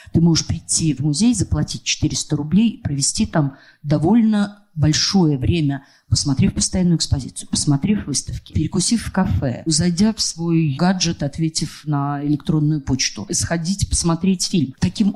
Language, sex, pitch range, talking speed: Russian, female, 140-180 Hz, 135 wpm